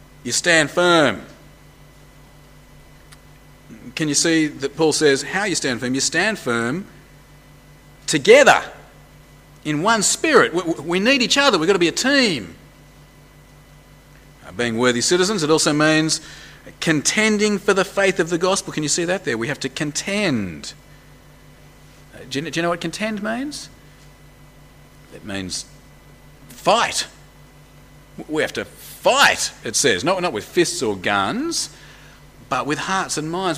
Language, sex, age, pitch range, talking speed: English, male, 40-59, 145-195 Hz, 140 wpm